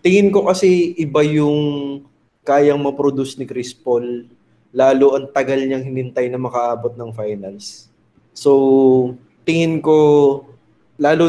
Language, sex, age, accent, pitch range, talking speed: Filipino, male, 20-39, native, 125-145 Hz, 120 wpm